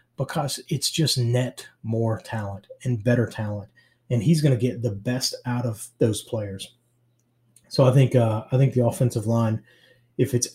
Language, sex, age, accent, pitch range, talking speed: English, male, 30-49, American, 110-125 Hz, 175 wpm